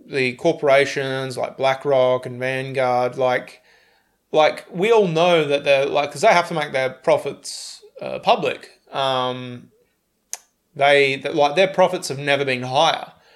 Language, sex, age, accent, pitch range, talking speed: English, male, 20-39, Australian, 130-150 Hz, 145 wpm